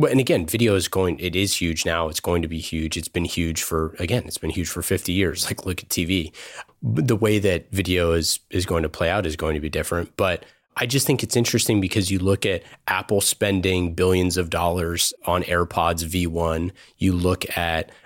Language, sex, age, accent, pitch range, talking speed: English, male, 30-49, American, 85-105 Hz, 215 wpm